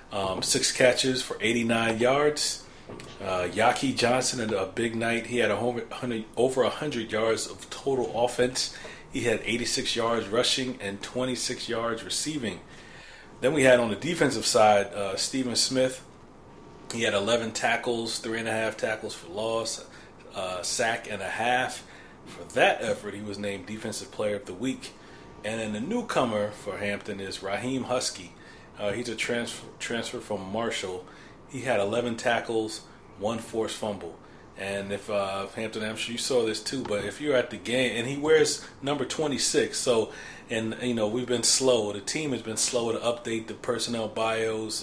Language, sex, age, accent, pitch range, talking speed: English, male, 40-59, American, 110-125 Hz, 170 wpm